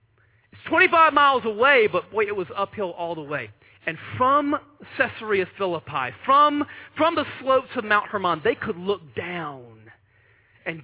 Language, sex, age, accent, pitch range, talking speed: English, male, 40-59, American, 115-195 Hz, 150 wpm